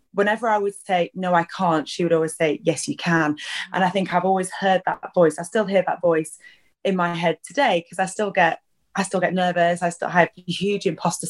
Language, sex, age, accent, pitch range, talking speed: English, female, 20-39, British, 170-205 Hz, 235 wpm